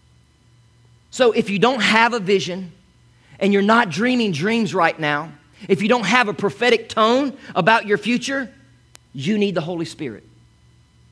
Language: English